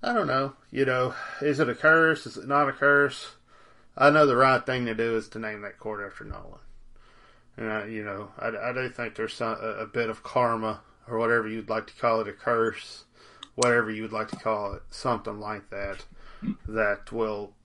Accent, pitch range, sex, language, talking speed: American, 110-130 Hz, male, English, 215 wpm